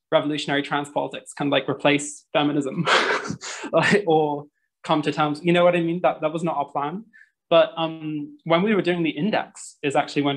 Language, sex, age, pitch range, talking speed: English, male, 20-39, 140-160 Hz, 205 wpm